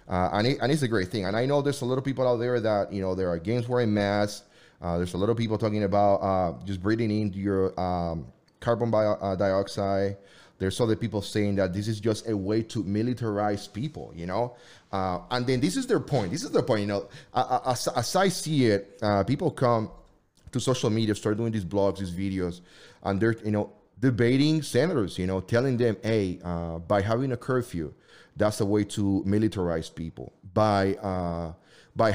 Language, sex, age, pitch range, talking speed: English, male, 30-49, 95-115 Hz, 205 wpm